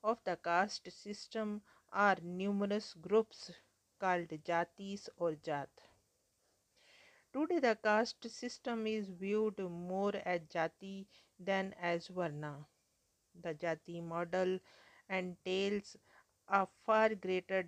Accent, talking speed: Indian, 100 wpm